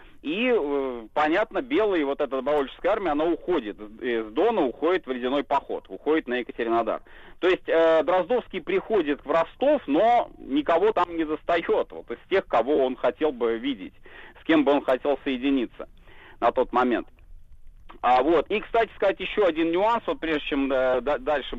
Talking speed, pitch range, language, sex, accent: 155 wpm, 135-190 Hz, Russian, male, native